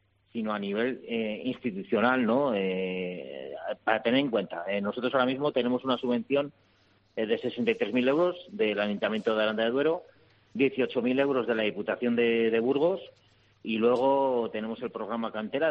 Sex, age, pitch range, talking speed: male, 40-59, 100-125 Hz, 160 wpm